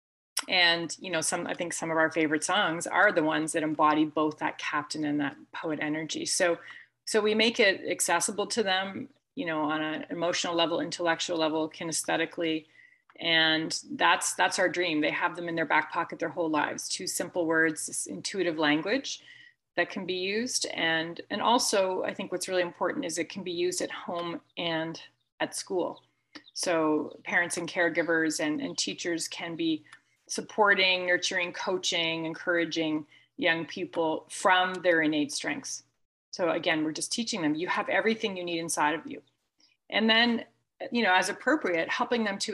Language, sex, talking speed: English, female, 175 wpm